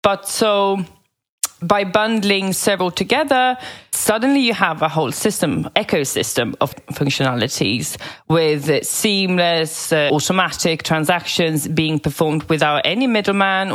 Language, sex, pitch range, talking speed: English, female, 145-190 Hz, 110 wpm